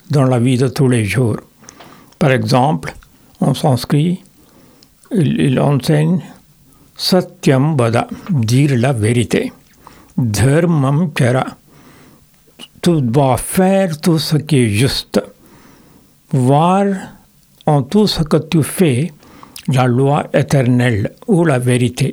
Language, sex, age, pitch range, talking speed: French, male, 60-79, 130-170 Hz, 125 wpm